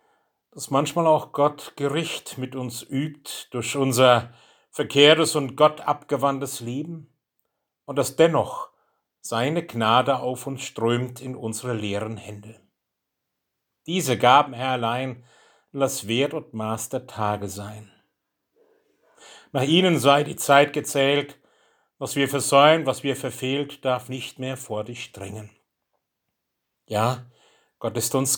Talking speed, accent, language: 125 wpm, German, German